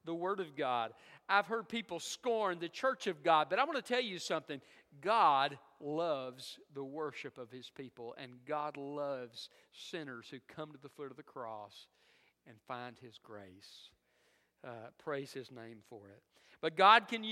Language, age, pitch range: English, 50-69, 110-175 Hz